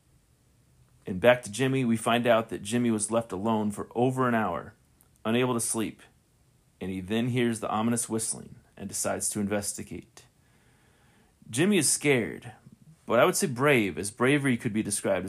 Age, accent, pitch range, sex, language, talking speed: 30-49, American, 105-120 Hz, male, English, 170 wpm